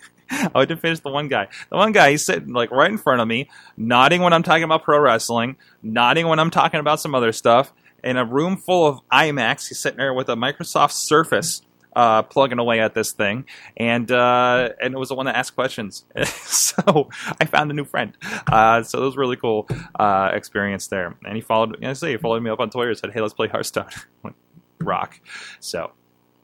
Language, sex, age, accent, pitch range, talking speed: English, male, 20-39, American, 115-170 Hz, 225 wpm